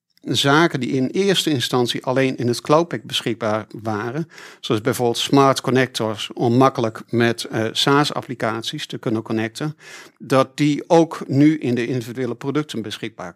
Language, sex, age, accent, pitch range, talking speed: Dutch, male, 50-69, Dutch, 120-145 Hz, 145 wpm